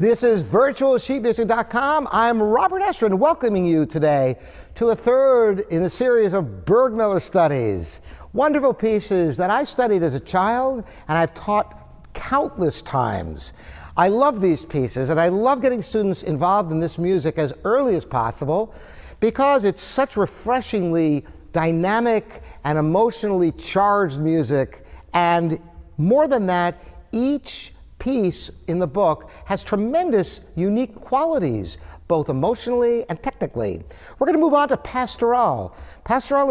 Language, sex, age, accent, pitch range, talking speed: English, male, 60-79, American, 160-235 Hz, 135 wpm